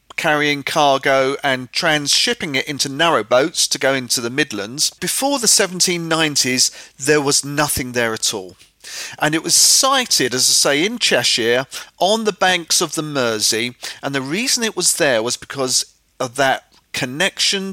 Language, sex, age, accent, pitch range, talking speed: English, male, 40-59, British, 135-180 Hz, 165 wpm